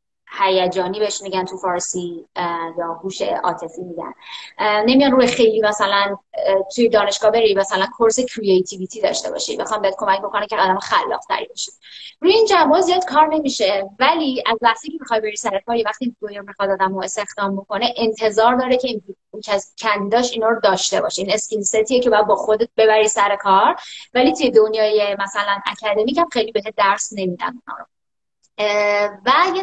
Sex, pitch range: female, 200-245 Hz